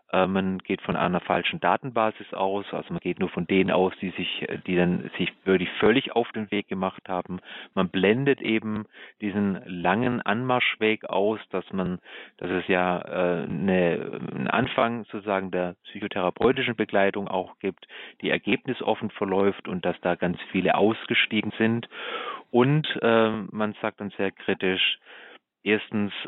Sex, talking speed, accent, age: male, 155 wpm, German, 30-49